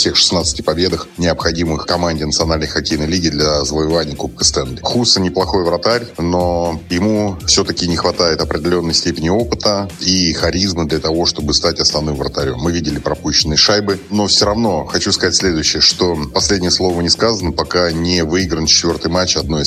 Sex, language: male, Russian